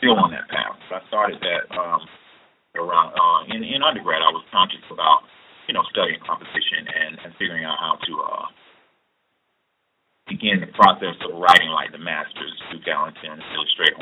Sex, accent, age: male, American, 40-59